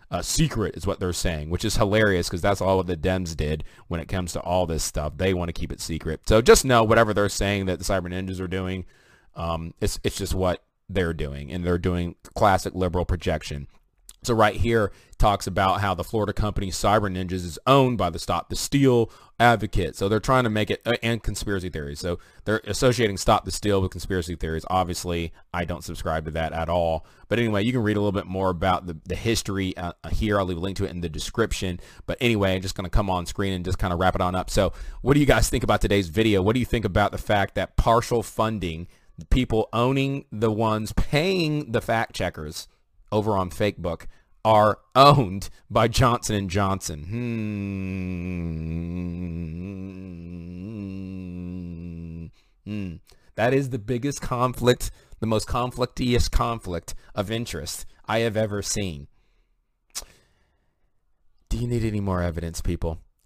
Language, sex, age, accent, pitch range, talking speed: English, male, 30-49, American, 85-110 Hz, 190 wpm